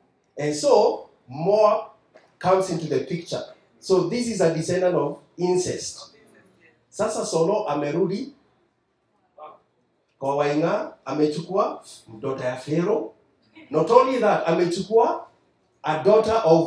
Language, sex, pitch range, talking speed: English, male, 160-220 Hz, 100 wpm